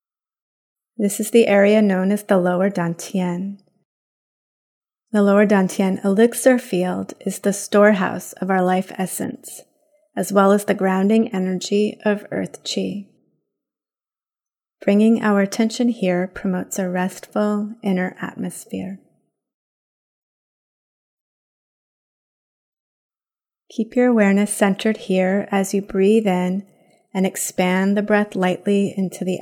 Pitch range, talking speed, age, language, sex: 185-225 Hz, 110 wpm, 30-49, English, female